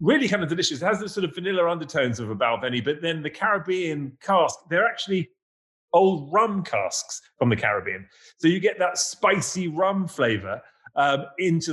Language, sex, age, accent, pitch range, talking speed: English, male, 30-49, British, 150-200 Hz, 185 wpm